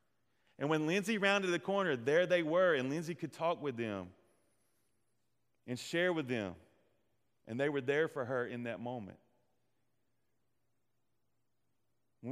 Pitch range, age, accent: 120-160 Hz, 30-49, American